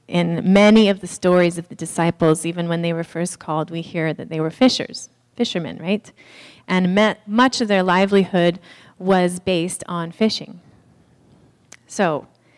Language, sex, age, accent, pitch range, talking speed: English, female, 30-49, American, 165-200 Hz, 155 wpm